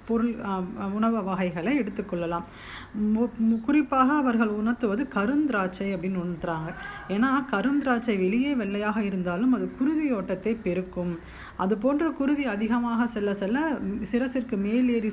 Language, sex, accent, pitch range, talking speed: Tamil, female, native, 190-245 Hz, 105 wpm